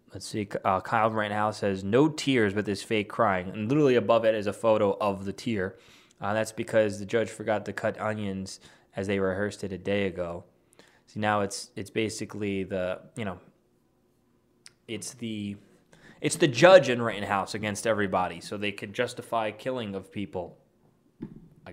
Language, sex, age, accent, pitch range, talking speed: English, male, 20-39, American, 100-135 Hz, 175 wpm